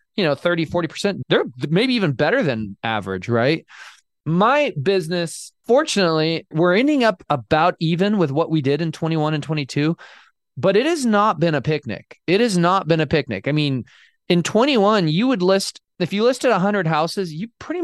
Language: English